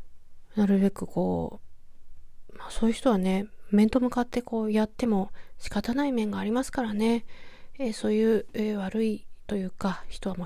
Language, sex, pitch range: Japanese, female, 200-240 Hz